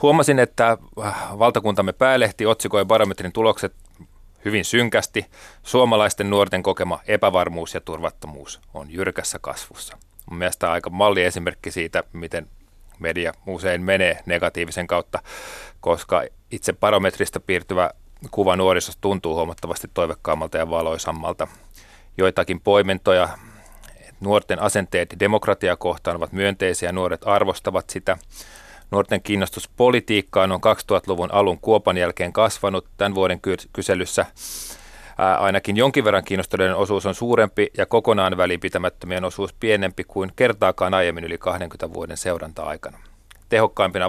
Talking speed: 115 wpm